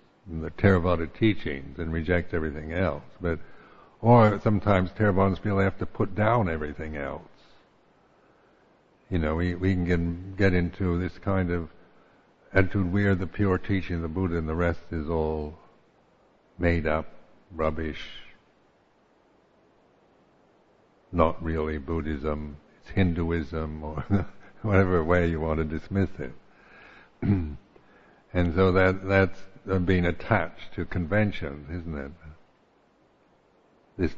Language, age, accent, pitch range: English, 60-79, American, 80-95 Hz